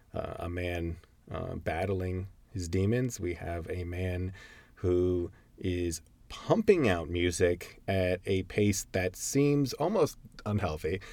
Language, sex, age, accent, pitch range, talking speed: English, male, 30-49, American, 85-105 Hz, 125 wpm